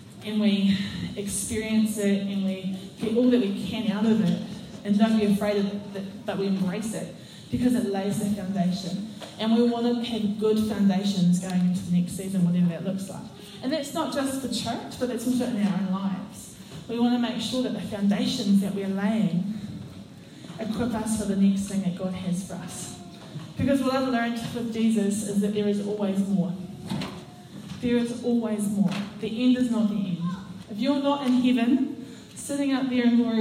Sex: female